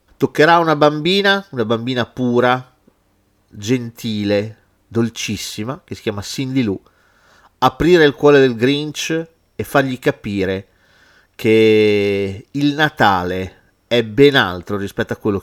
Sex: male